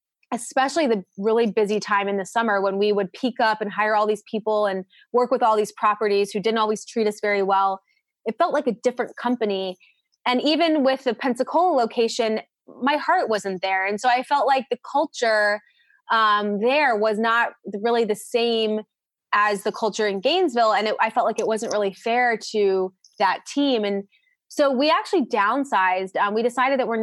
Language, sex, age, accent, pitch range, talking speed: English, female, 20-39, American, 200-250 Hz, 195 wpm